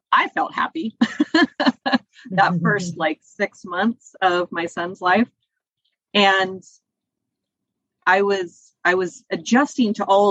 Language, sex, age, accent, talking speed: English, female, 30-49, American, 115 wpm